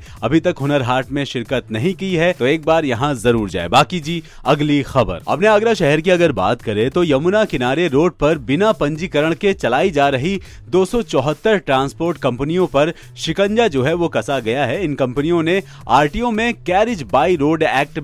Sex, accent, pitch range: male, native, 130-180 Hz